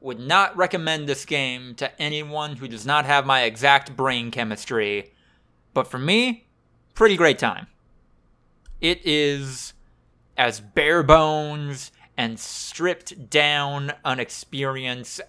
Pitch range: 115-160 Hz